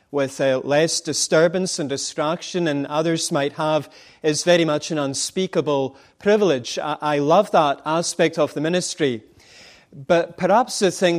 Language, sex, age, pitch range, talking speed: English, male, 30-49, 135-165 Hz, 150 wpm